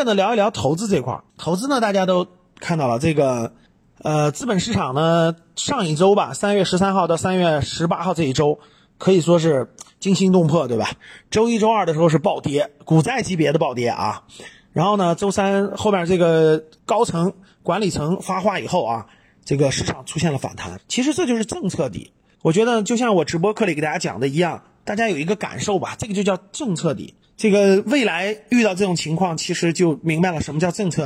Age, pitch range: 30-49, 160-205 Hz